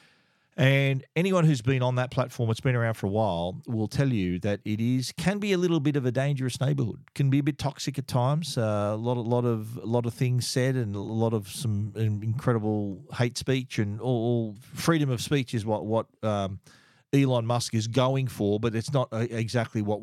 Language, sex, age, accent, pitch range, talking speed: English, male, 40-59, Australian, 110-130 Hz, 230 wpm